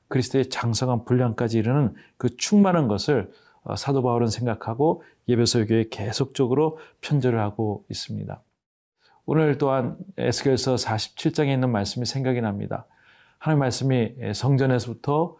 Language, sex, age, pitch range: Korean, male, 40-59, 120-140 Hz